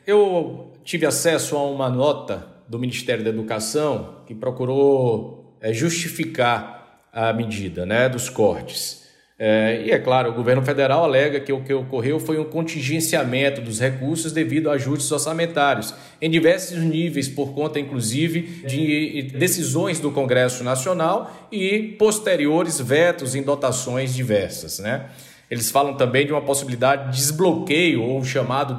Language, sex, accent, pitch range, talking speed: Portuguese, male, Brazilian, 130-165 Hz, 140 wpm